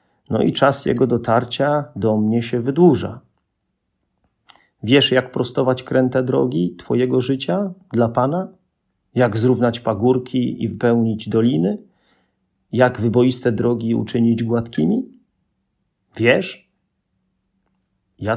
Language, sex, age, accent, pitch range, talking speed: Polish, male, 40-59, native, 100-130 Hz, 100 wpm